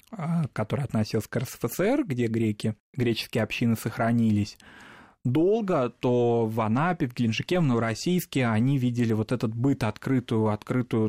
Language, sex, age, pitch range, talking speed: Russian, male, 20-39, 110-130 Hz, 130 wpm